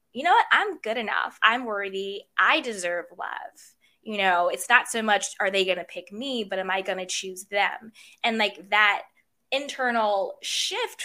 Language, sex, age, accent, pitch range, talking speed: English, female, 20-39, American, 195-240 Hz, 190 wpm